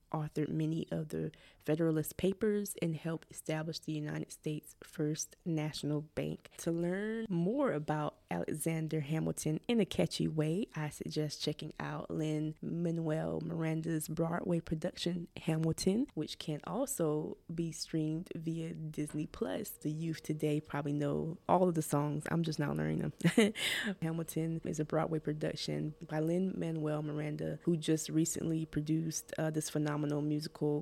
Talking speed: 140 wpm